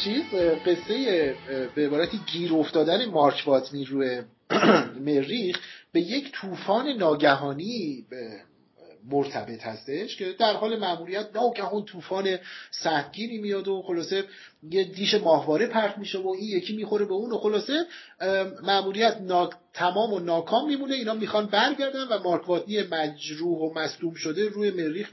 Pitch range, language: 155-210 Hz, Persian